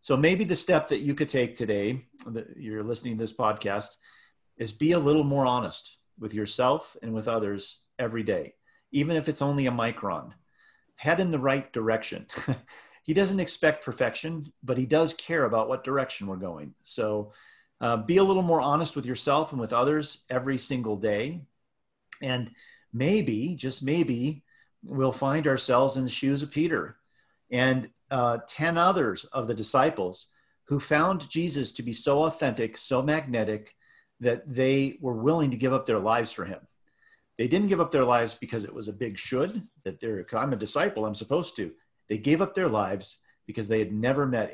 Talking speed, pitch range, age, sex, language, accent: 185 wpm, 110-145 Hz, 40-59, male, English, American